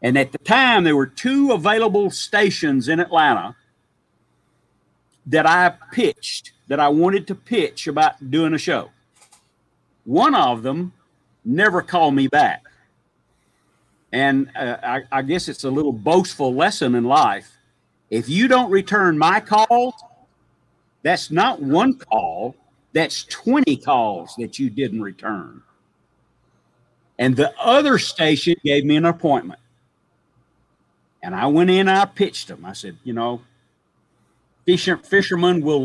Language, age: English, 50-69